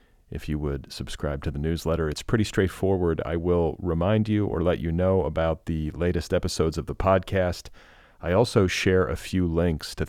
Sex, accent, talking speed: male, American, 190 wpm